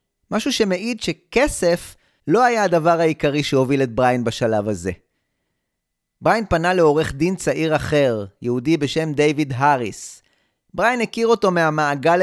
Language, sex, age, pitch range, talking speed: Hebrew, male, 30-49, 140-200 Hz, 130 wpm